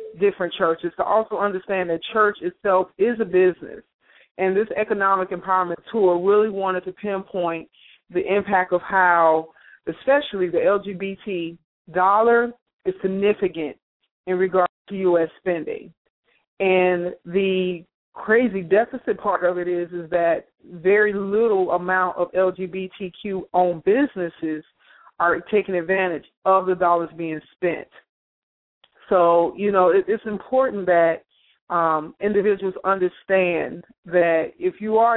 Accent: American